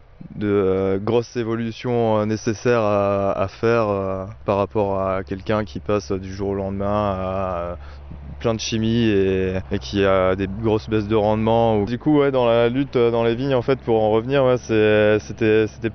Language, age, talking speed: French, 20-39, 205 wpm